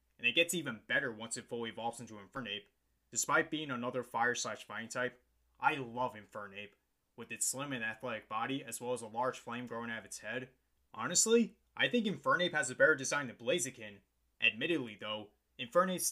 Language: English